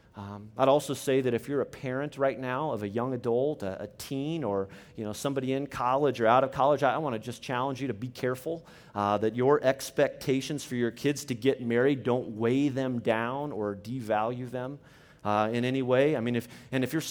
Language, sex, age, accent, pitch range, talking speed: English, male, 30-49, American, 110-135 Hz, 230 wpm